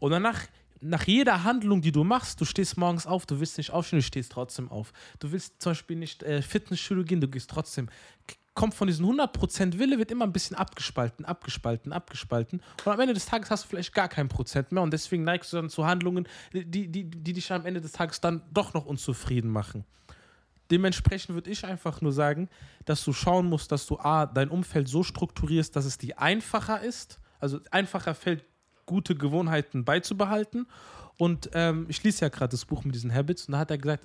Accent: German